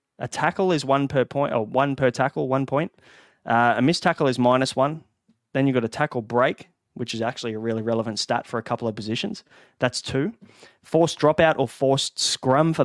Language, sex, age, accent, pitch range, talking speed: English, male, 20-39, Australian, 120-150 Hz, 210 wpm